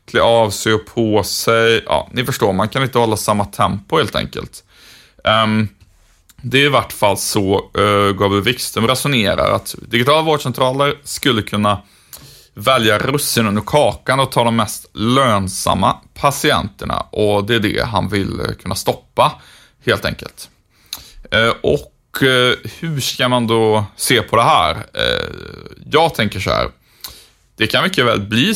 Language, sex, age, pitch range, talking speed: Swedish, male, 30-49, 100-120 Hz, 150 wpm